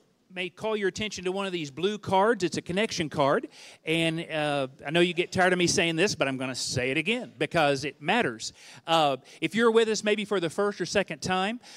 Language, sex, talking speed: English, male, 240 wpm